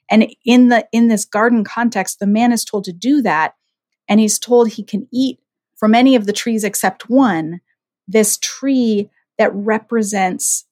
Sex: female